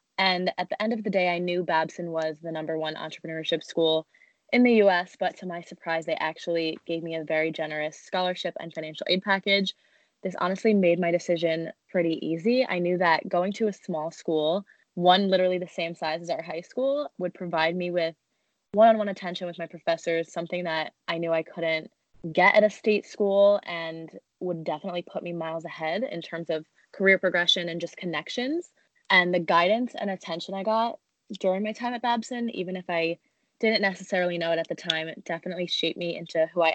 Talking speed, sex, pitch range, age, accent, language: 200 wpm, female, 165-200 Hz, 20-39, American, English